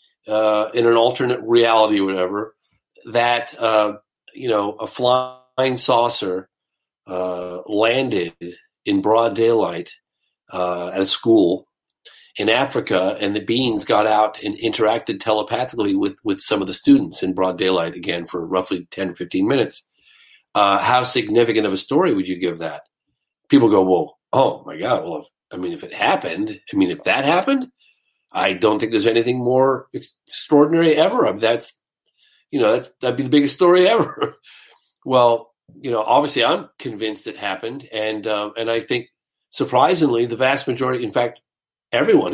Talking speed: 165 wpm